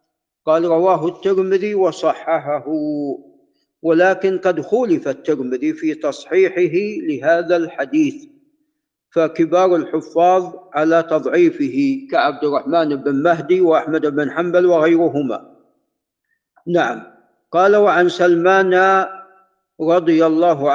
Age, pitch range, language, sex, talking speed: 50-69, 165-195 Hz, Arabic, male, 85 wpm